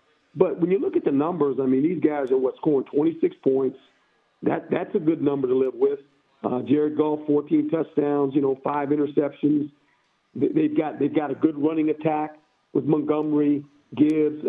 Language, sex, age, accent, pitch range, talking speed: English, male, 50-69, American, 150-245 Hz, 185 wpm